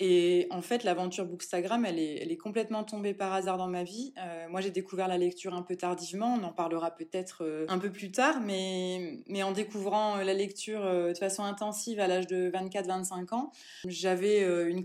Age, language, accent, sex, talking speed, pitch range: 20-39, French, French, female, 200 wpm, 175-205 Hz